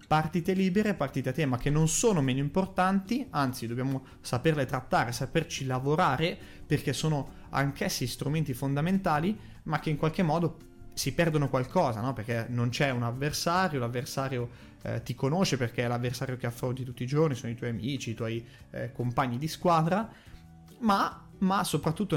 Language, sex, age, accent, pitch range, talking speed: Italian, male, 30-49, native, 125-180 Hz, 160 wpm